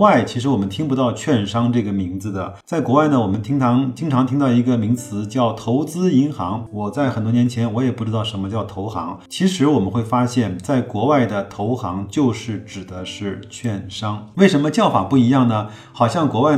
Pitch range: 105-135 Hz